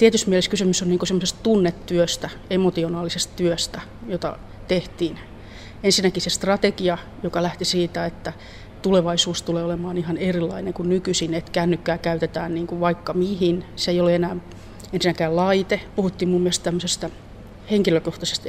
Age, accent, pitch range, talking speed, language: 30-49, native, 165-185 Hz, 135 wpm, Finnish